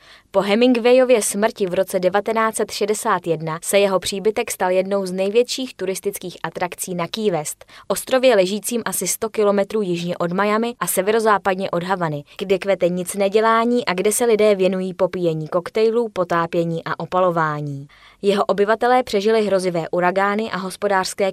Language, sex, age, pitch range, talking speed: Czech, female, 20-39, 175-210 Hz, 140 wpm